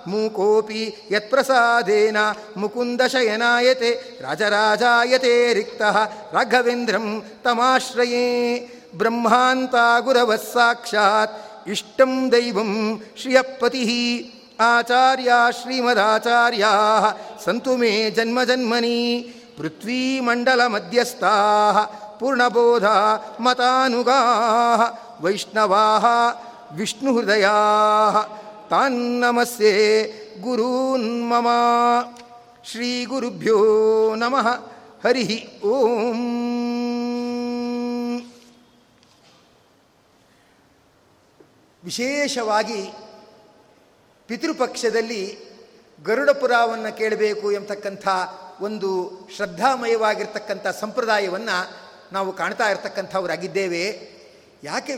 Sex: male